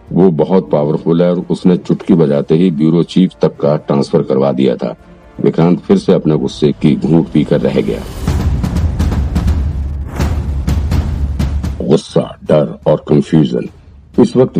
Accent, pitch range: native, 70-80 Hz